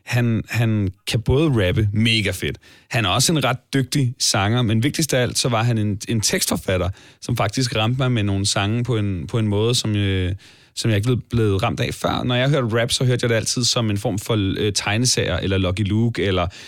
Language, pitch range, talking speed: Danish, 100-125 Hz, 225 wpm